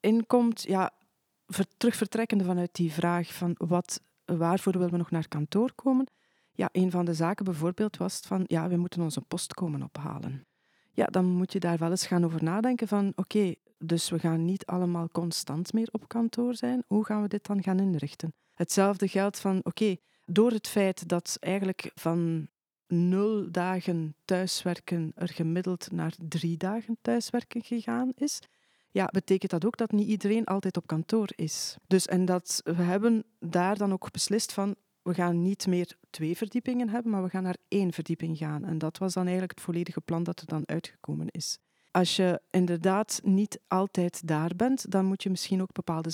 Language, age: French, 40-59